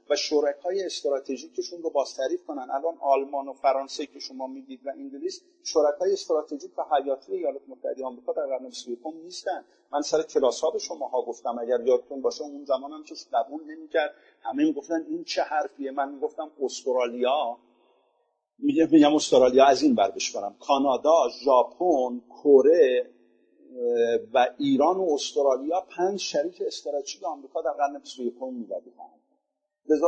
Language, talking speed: Persian, 155 wpm